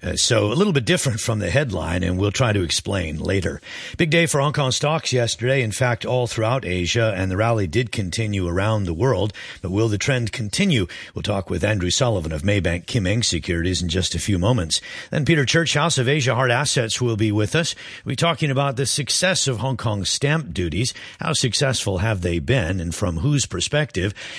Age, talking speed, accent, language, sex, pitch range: 50-69, 210 wpm, American, English, male, 95-135 Hz